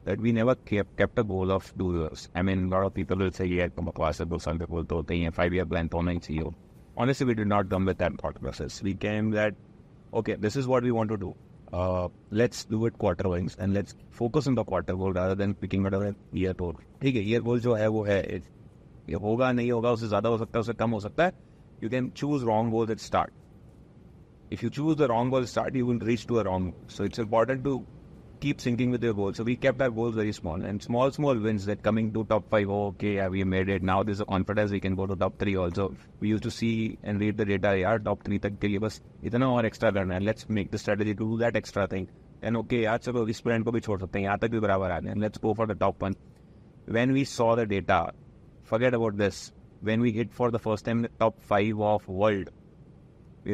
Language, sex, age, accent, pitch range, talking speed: English, male, 30-49, Indian, 95-115 Hz, 205 wpm